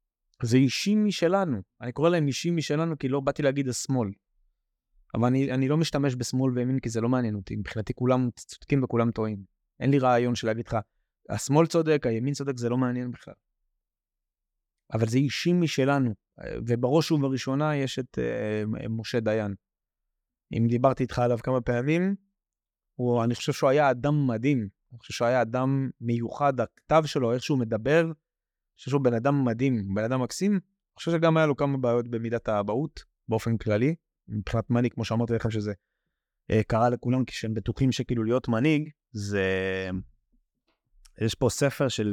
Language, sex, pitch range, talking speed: Hebrew, male, 110-140 Hz, 170 wpm